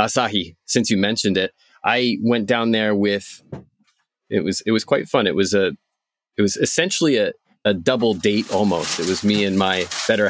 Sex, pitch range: male, 95-120 Hz